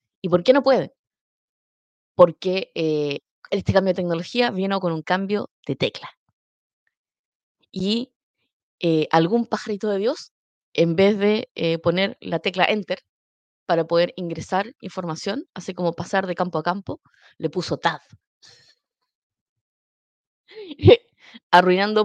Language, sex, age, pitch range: Spanish, female, 20-39, 180-245 Hz